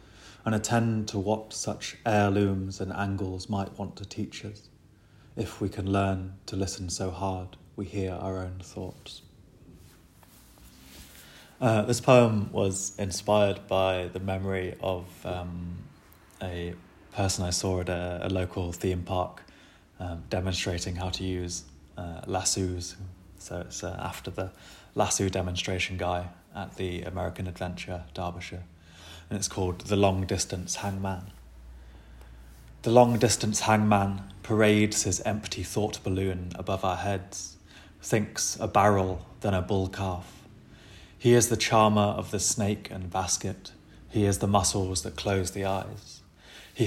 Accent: British